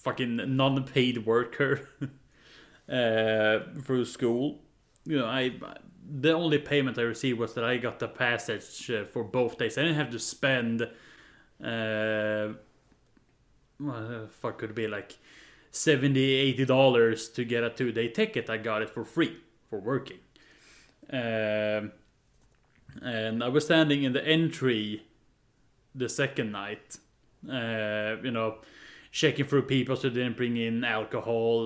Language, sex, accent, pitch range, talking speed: English, male, Norwegian, 115-140 Hz, 140 wpm